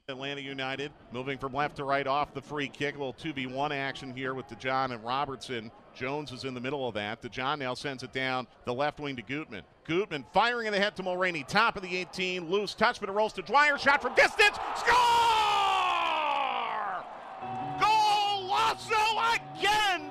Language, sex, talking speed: English, male, 185 wpm